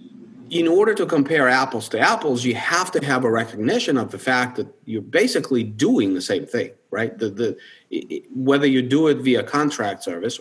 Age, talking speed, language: 40-59, 180 wpm, English